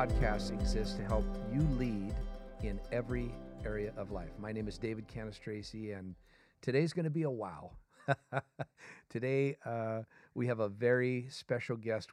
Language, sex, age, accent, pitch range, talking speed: English, male, 50-69, American, 110-135 Hz, 155 wpm